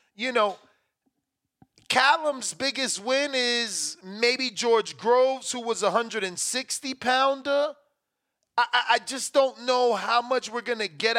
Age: 30-49